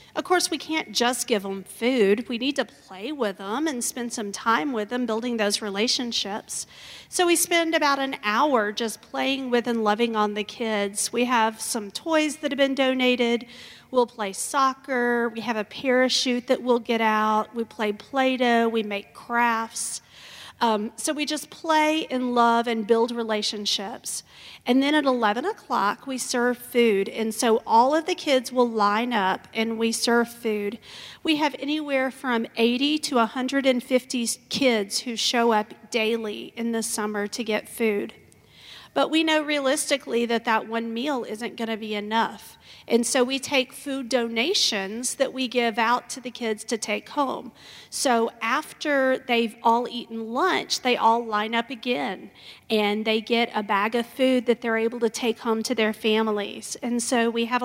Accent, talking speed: American, 180 wpm